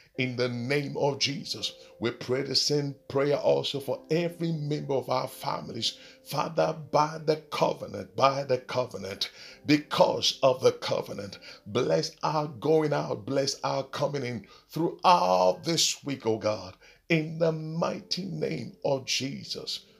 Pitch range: 110-150 Hz